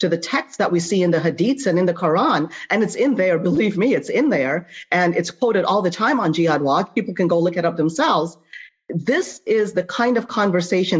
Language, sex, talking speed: English, female, 240 wpm